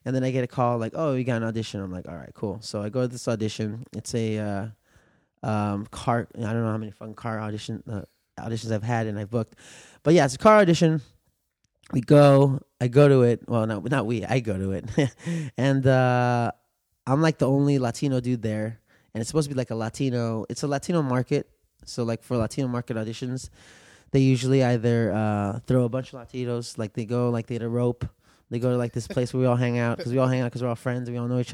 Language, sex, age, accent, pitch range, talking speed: English, male, 20-39, American, 115-140 Hz, 250 wpm